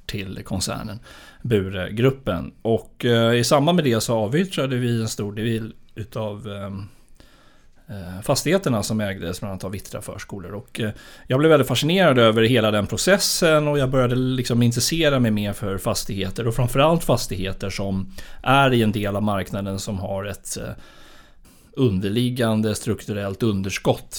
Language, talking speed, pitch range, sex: Swedish, 150 wpm, 100-125 Hz, male